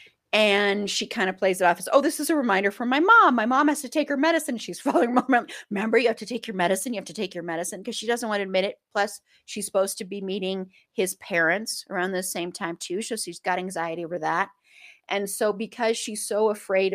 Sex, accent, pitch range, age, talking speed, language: female, American, 185-230 Hz, 30-49, 250 wpm, English